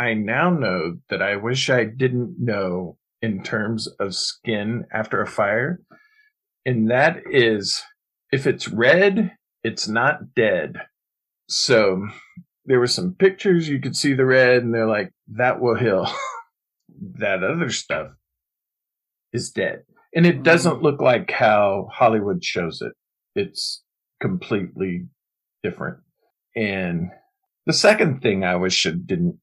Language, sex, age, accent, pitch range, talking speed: English, male, 40-59, American, 115-175 Hz, 135 wpm